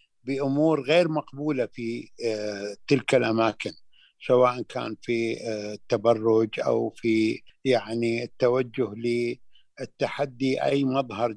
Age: 60-79